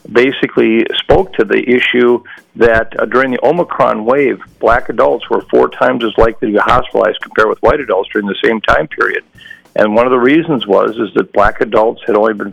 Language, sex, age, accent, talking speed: English, male, 50-69, American, 205 wpm